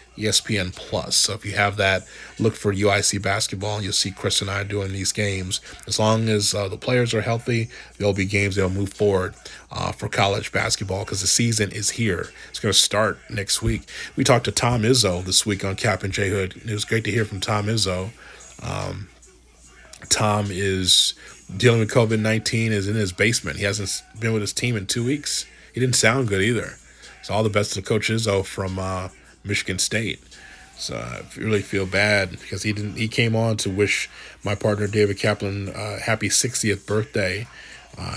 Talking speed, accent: 200 wpm, American